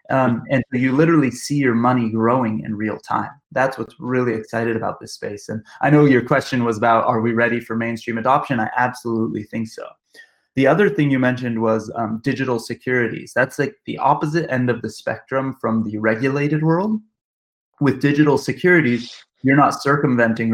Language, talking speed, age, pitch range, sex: English, 180 wpm, 20-39, 110-130 Hz, male